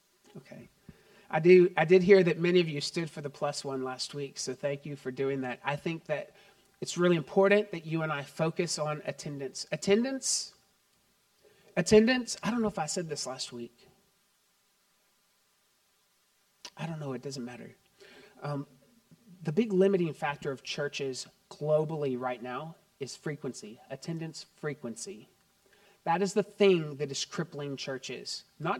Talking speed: 160 wpm